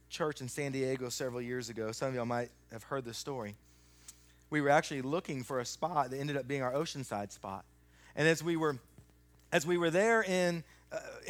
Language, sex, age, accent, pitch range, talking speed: English, male, 30-49, American, 140-205 Hz, 205 wpm